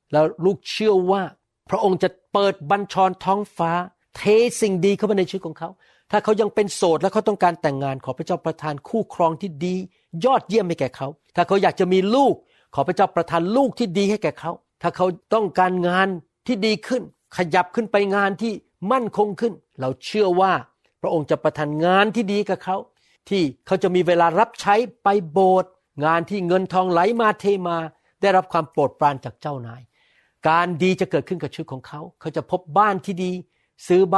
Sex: male